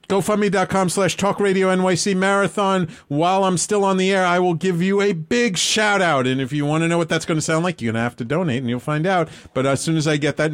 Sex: male